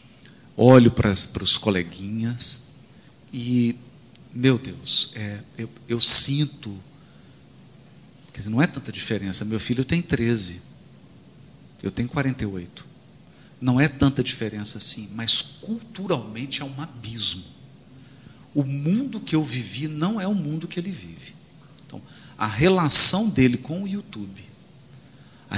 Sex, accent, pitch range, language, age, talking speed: male, Brazilian, 115-170 Hz, Portuguese, 50-69, 125 wpm